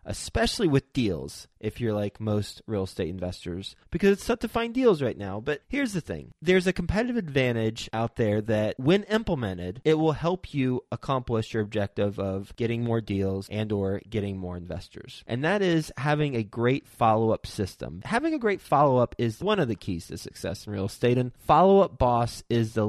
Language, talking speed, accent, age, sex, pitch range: English, 195 wpm, American, 30-49, male, 110-150 Hz